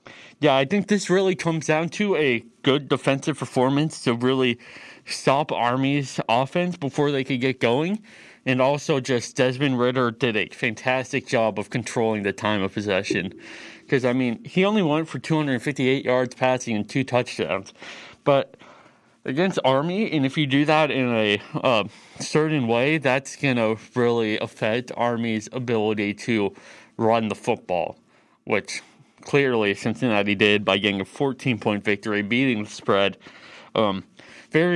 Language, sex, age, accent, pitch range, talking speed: English, male, 20-39, American, 110-140 Hz, 150 wpm